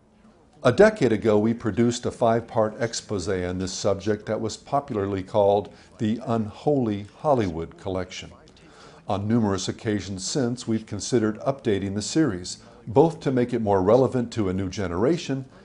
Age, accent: 50-69, American